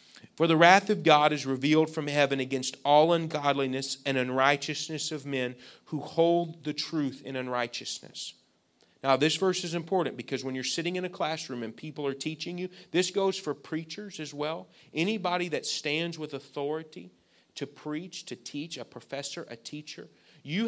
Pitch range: 135-175 Hz